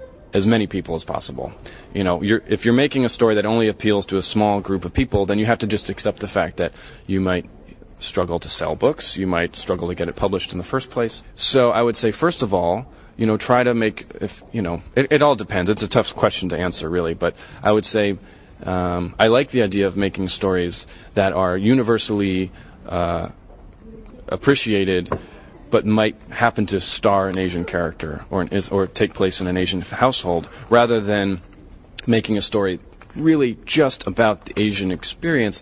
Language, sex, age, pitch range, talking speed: English, male, 30-49, 90-115 Hz, 200 wpm